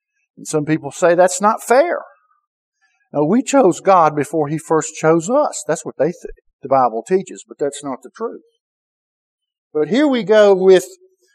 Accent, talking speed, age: American, 175 wpm, 50-69